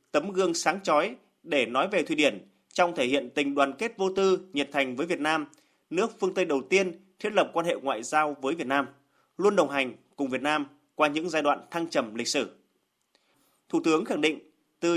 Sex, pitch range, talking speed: male, 145-190 Hz, 220 wpm